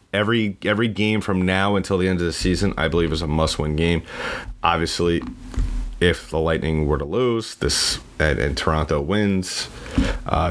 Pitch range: 80-95 Hz